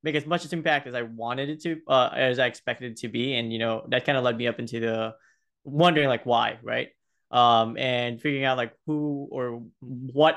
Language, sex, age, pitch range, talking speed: Hindi, male, 20-39, 115-135 Hz, 235 wpm